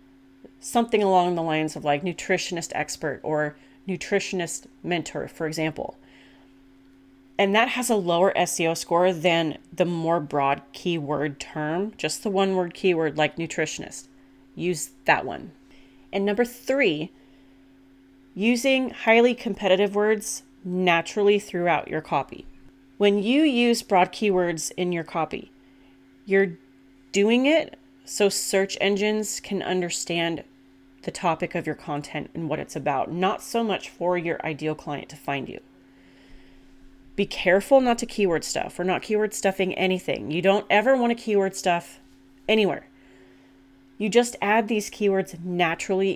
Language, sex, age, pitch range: English, female, 30-49, 135-200 Hz